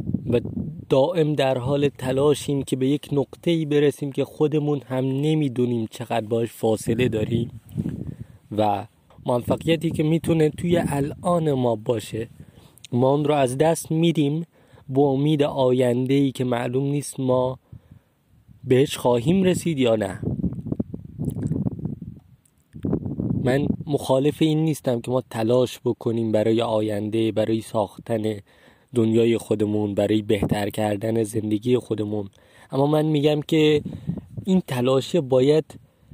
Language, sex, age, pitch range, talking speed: Persian, male, 20-39, 120-150 Hz, 115 wpm